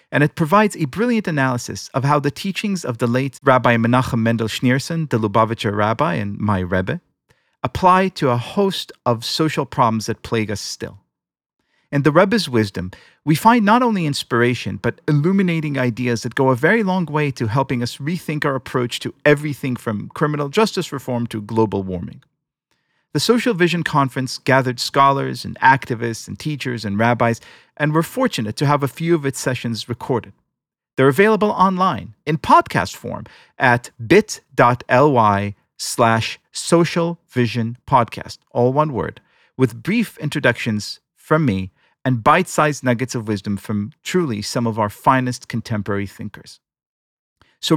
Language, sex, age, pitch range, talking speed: English, male, 40-59, 115-155 Hz, 155 wpm